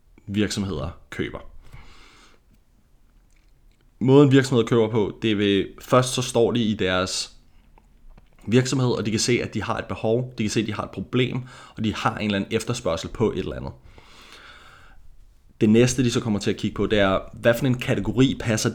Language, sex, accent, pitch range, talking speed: Danish, male, native, 95-115 Hz, 190 wpm